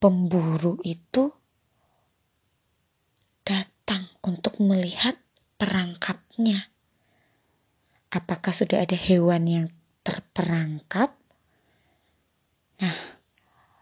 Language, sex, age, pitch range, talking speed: Indonesian, female, 20-39, 180-230 Hz, 55 wpm